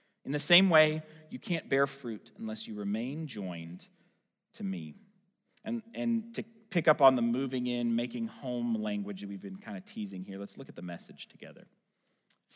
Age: 30-49